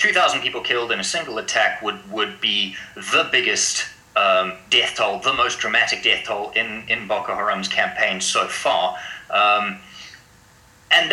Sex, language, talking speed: male, English, 155 wpm